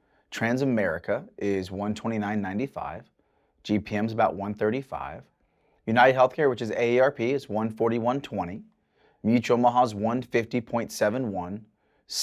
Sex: male